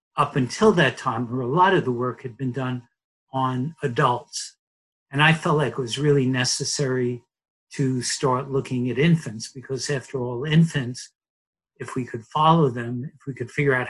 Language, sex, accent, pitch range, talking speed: English, male, American, 125-145 Hz, 180 wpm